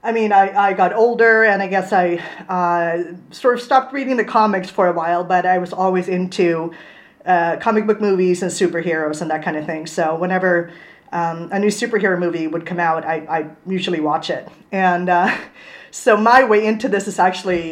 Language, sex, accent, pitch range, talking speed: English, female, American, 170-205 Hz, 205 wpm